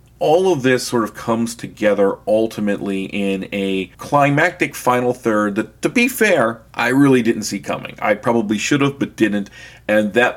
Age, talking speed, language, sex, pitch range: 40-59, 175 wpm, English, male, 105-130 Hz